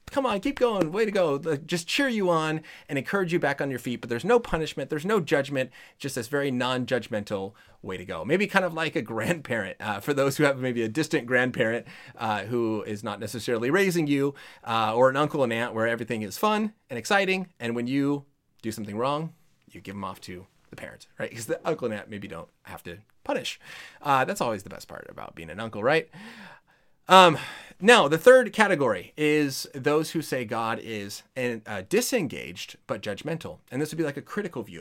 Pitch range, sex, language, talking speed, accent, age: 115-165 Hz, male, English, 215 wpm, American, 30-49